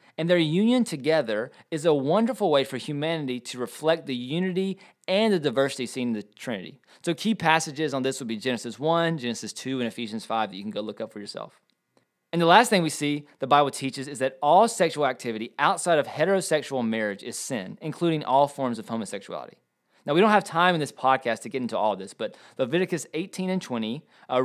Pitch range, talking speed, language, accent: 125-170 Hz, 215 wpm, English, American